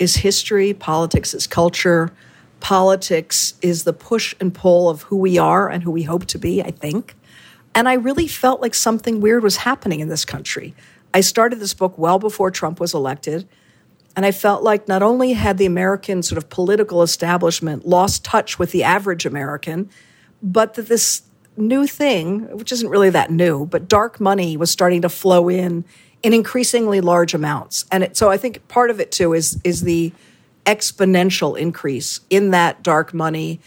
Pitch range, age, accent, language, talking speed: 170-210 Hz, 50-69, American, English, 185 wpm